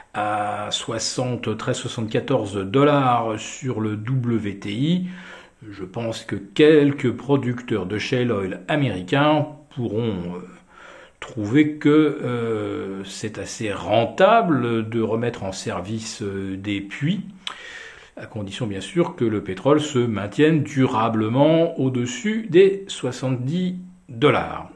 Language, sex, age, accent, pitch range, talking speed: French, male, 50-69, French, 105-145 Hz, 105 wpm